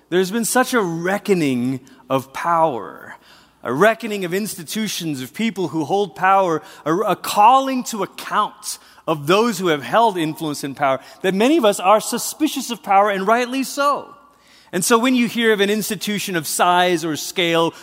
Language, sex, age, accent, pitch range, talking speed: English, male, 30-49, American, 180-230 Hz, 170 wpm